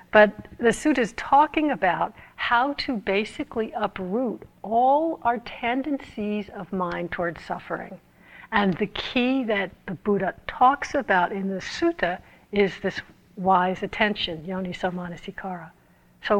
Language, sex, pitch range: English, female, 175-215 Hz